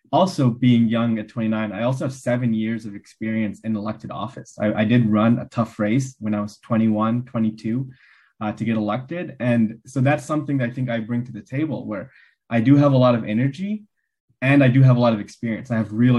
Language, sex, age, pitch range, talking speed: English, male, 20-39, 110-130 Hz, 230 wpm